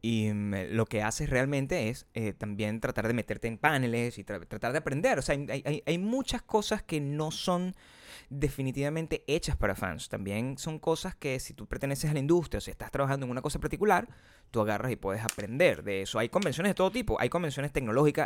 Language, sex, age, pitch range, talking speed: Spanish, male, 20-39, 115-160 Hz, 210 wpm